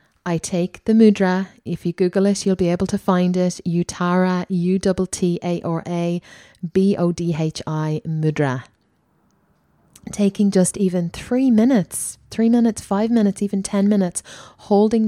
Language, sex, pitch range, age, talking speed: English, female, 175-215 Hz, 20-39, 125 wpm